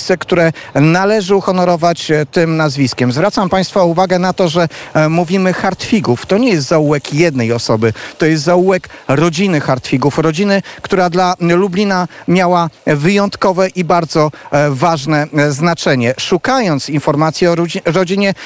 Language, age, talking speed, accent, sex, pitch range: Polish, 40-59, 125 wpm, native, male, 150-200 Hz